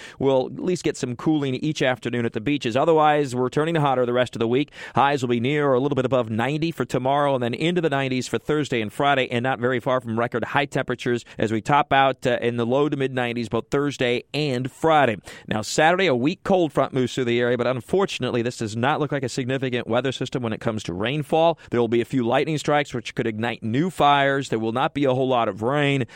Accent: American